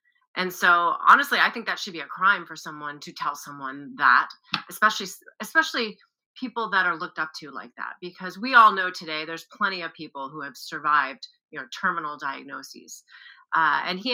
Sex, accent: female, American